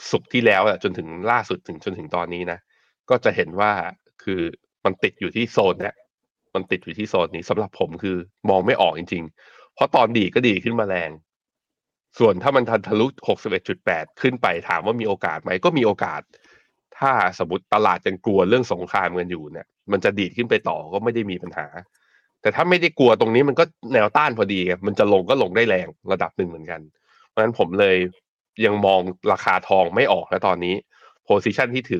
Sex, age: male, 20-39